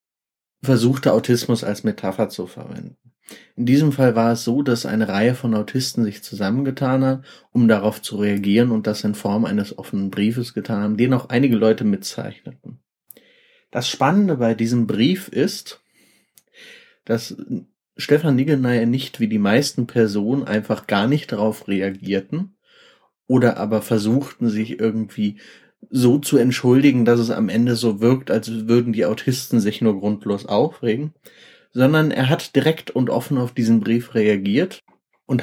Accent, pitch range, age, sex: German, 110-130 Hz, 30-49, male